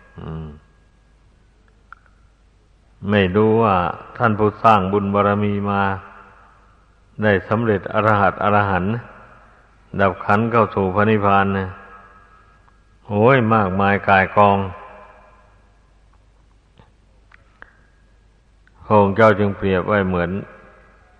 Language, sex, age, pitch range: Thai, male, 60-79, 95-110 Hz